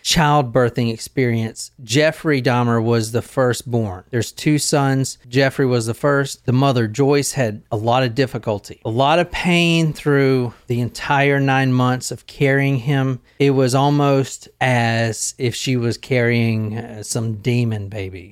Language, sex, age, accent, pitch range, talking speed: English, male, 40-59, American, 115-140 Hz, 150 wpm